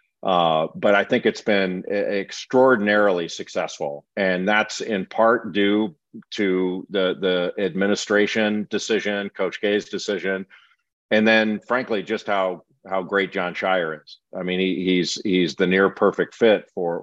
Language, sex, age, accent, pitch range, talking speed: English, male, 50-69, American, 90-105 Hz, 140 wpm